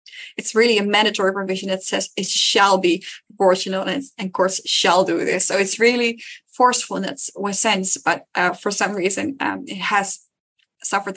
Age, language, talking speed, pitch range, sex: 20-39, English, 170 wpm, 200-245 Hz, female